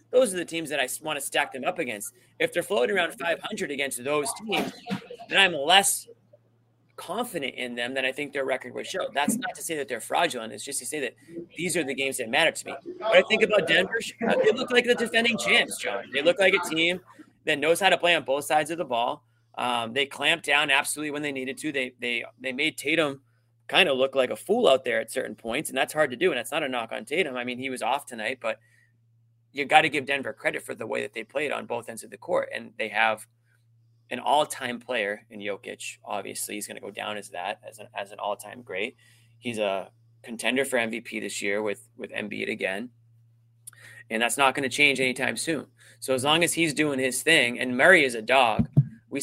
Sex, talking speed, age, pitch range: male, 245 wpm, 30-49, 115-155 Hz